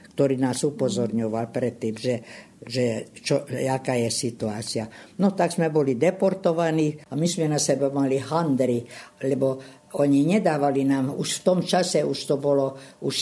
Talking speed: 155 wpm